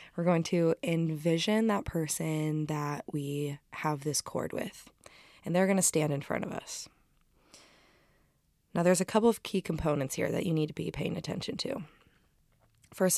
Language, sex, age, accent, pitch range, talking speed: English, female, 20-39, American, 150-170 Hz, 175 wpm